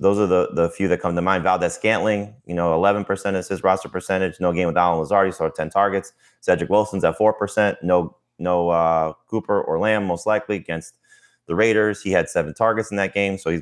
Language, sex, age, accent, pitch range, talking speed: English, male, 30-49, American, 85-105 Hz, 220 wpm